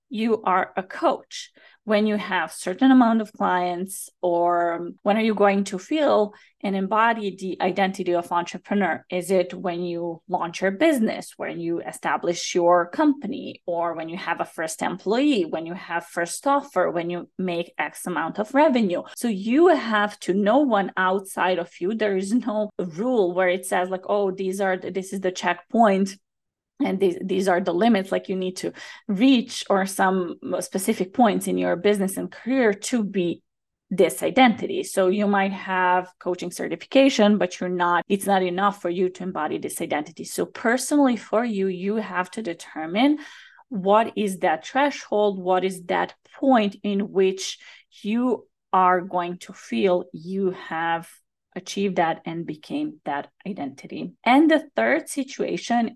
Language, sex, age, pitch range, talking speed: English, female, 20-39, 180-225 Hz, 165 wpm